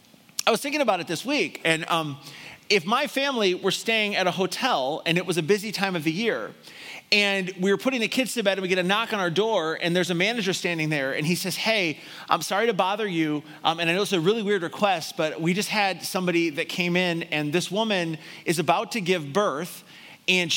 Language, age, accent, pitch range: English, 30-49, American, 170-220 Hz